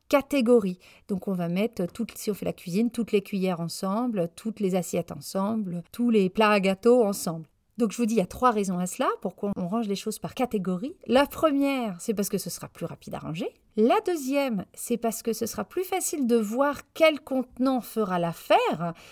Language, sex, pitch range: French, female, 185-250 Hz